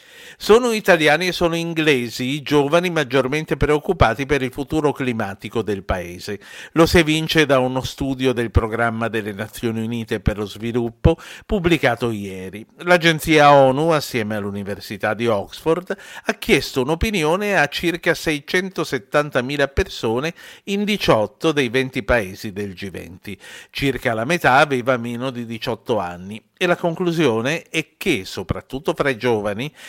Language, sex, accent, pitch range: Italian, male, native, 115-165 Hz